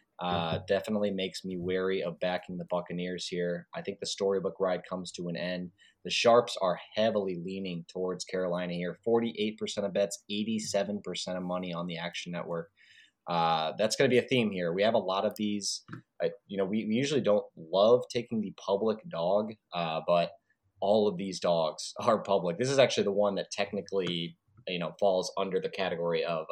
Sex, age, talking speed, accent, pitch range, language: male, 20-39, 190 wpm, American, 85-100 Hz, English